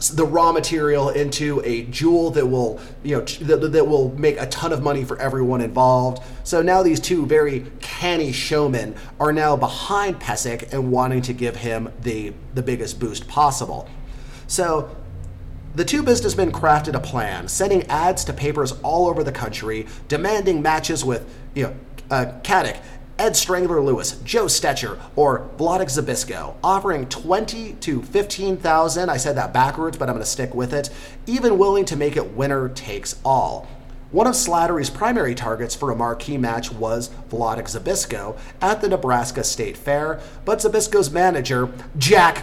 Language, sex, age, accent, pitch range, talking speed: English, male, 30-49, American, 125-170 Hz, 165 wpm